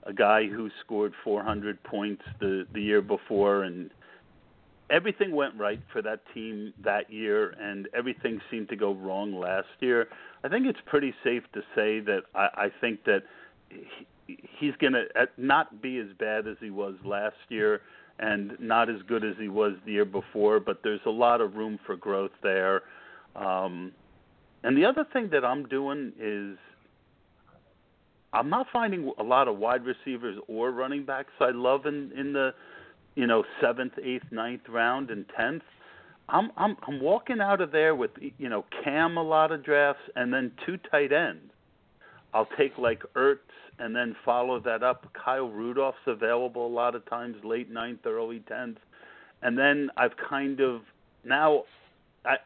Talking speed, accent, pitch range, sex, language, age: 175 wpm, American, 105-140 Hz, male, English, 50-69